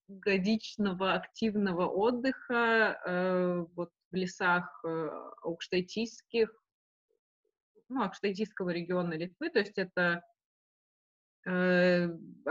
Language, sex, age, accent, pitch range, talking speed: Russian, female, 20-39, native, 180-220 Hz, 75 wpm